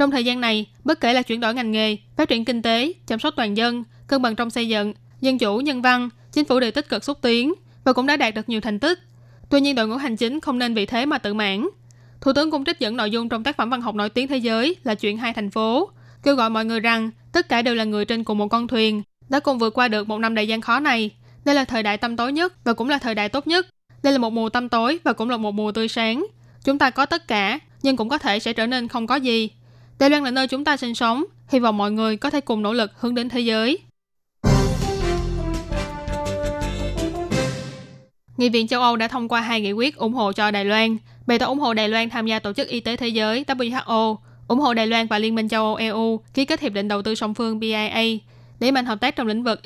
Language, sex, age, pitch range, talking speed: Vietnamese, female, 20-39, 215-255 Hz, 270 wpm